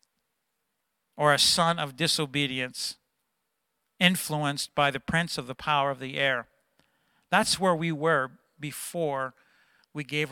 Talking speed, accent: 130 wpm, American